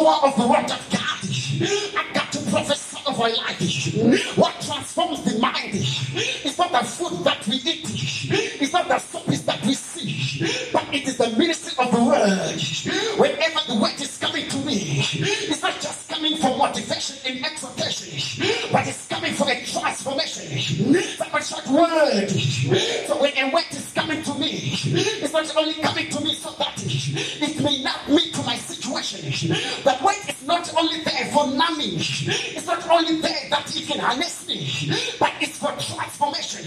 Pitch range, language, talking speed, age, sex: 240-320 Hz, English, 170 wpm, 40-59, male